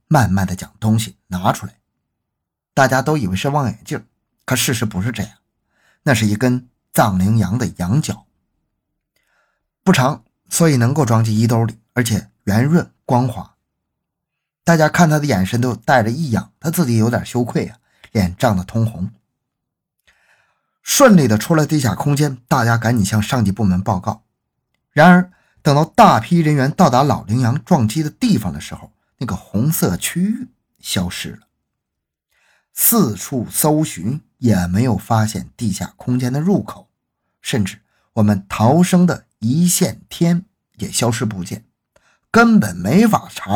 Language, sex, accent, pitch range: Chinese, male, native, 110-155 Hz